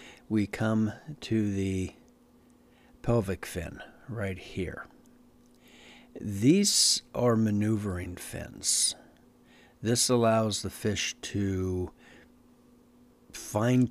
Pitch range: 95-115 Hz